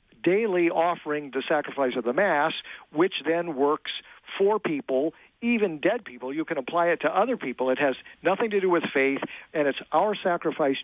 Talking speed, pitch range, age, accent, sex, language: 185 wpm, 135-180 Hz, 50-69, American, male, English